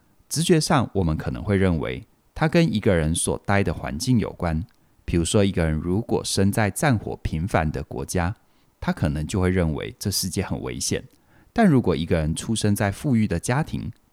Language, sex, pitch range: Chinese, male, 85-120 Hz